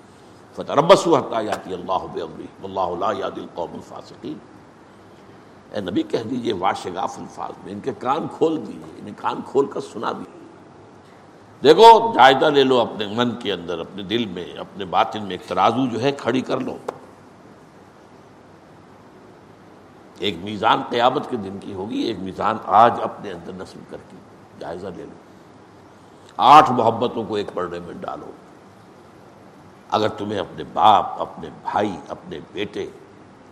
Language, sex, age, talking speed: Urdu, male, 60-79, 145 wpm